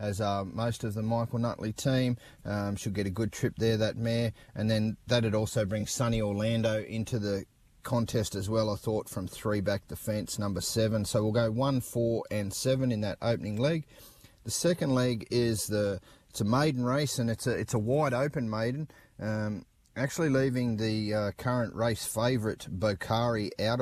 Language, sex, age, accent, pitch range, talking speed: English, male, 30-49, Australian, 105-120 Hz, 190 wpm